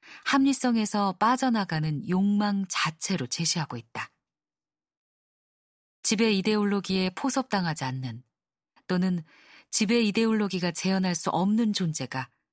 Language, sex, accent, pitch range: Korean, female, native, 160-215 Hz